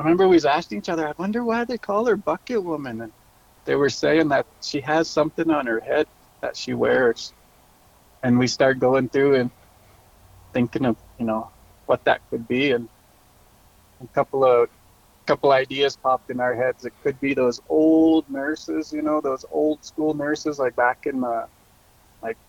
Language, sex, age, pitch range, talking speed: English, male, 30-49, 115-150 Hz, 190 wpm